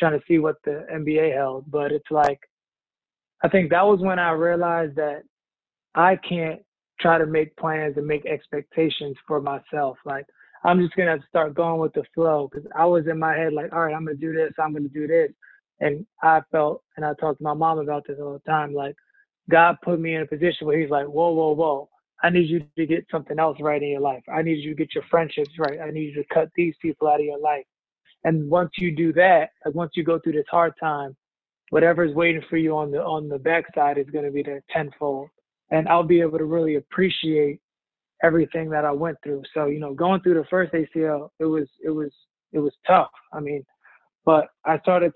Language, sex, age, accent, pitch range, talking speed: English, male, 20-39, American, 150-170 Hz, 235 wpm